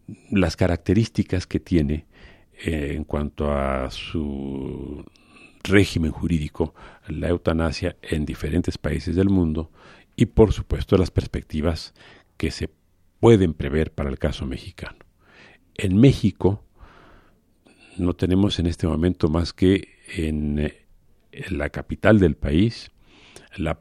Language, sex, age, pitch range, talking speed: Spanish, male, 50-69, 75-90 Hz, 115 wpm